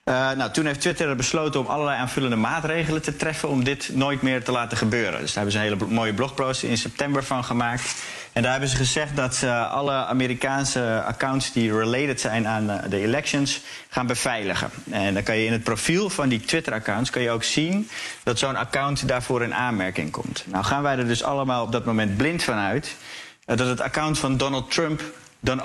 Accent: Dutch